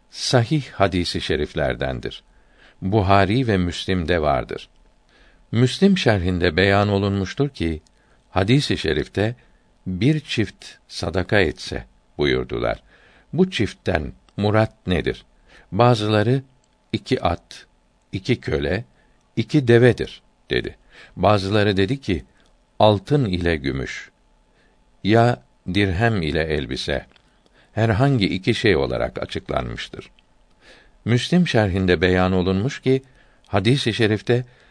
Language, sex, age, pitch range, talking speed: Turkish, male, 60-79, 90-125 Hz, 95 wpm